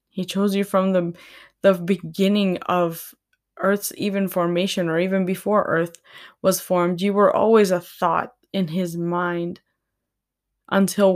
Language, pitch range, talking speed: English, 170-200 Hz, 140 wpm